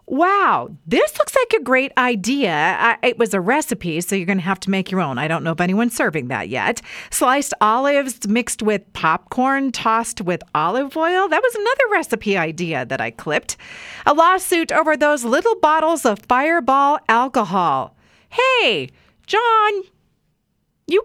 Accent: American